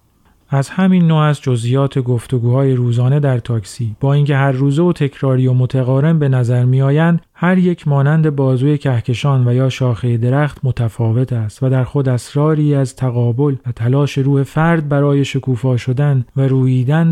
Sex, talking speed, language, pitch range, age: male, 160 wpm, Persian, 125-145 Hz, 40-59